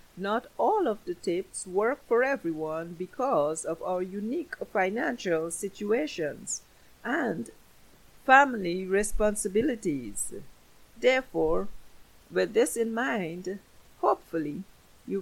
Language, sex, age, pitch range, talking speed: English, female, 50-69, 175-235 Hz, 95 wpm